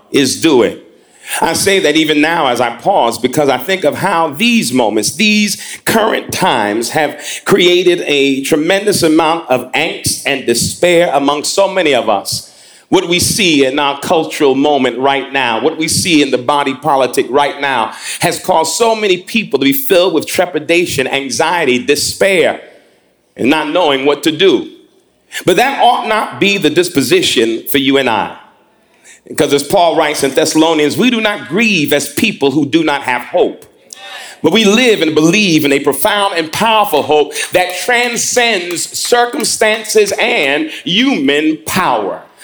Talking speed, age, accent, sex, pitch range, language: 165 wpm, 40-59, American, male, 150-230 Hz, English